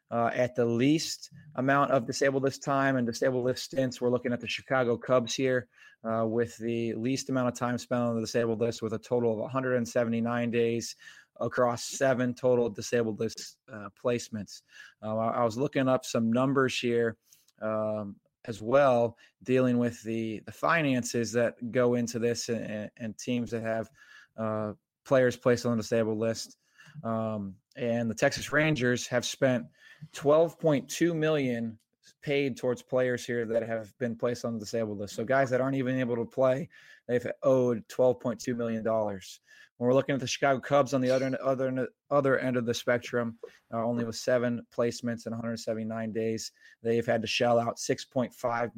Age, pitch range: 20-39, 115-130 Hz